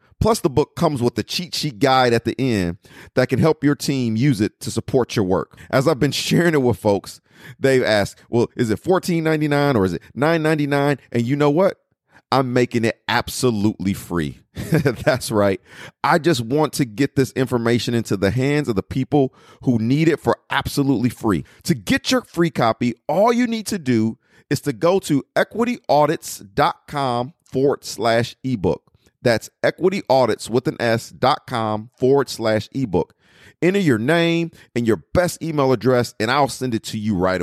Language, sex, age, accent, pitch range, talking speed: English, male, 40-59, American, 115-155 Hz, 175 wpm